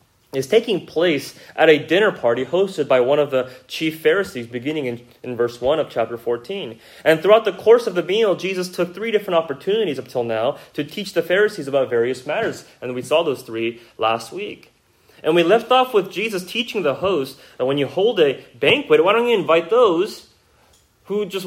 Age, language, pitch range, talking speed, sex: 30-49, English, 130-200 Hz, 205 wpm, male